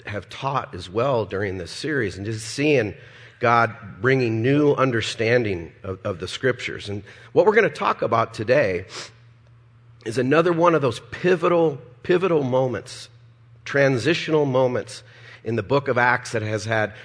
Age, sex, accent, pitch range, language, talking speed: 40-59, male, American, 110-130 Hz, English, 155 wpm